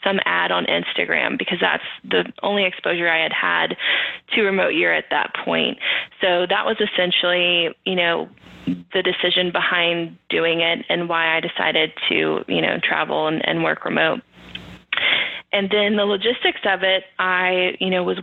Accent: American